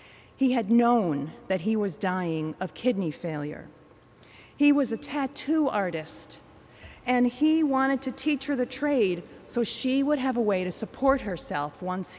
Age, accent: 40-59, American